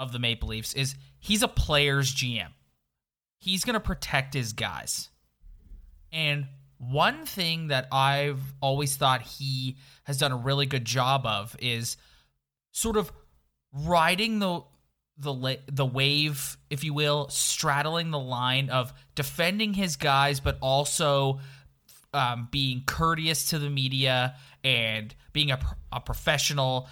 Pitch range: 120-145 Hz